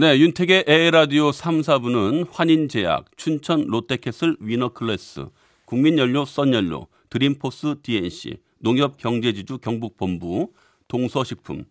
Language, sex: Korean, male